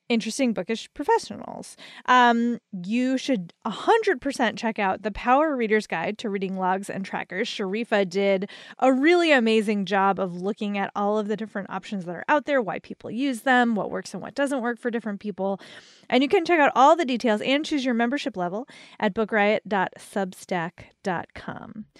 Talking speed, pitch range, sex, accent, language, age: 175 wpm, 200-280 Hz, female, American, English, 20-39